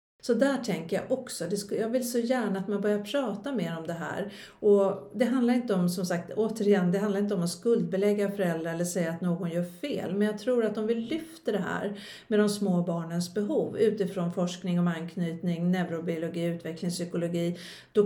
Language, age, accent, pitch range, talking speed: Swedish, 50-69, native, 175-220 Hz, 195 wpm